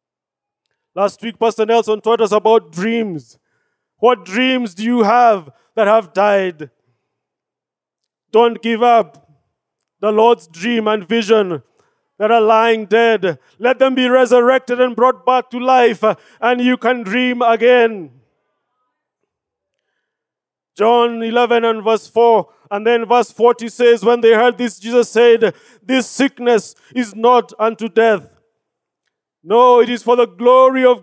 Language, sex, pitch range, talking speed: English, male, 220-255 Hz, 135 wpm